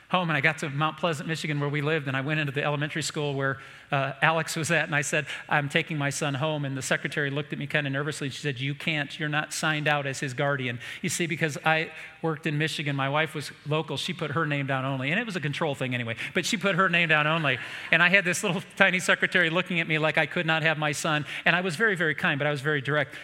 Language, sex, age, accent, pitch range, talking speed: English, male, 40-59, American, 140-165 Hz, 285 wpm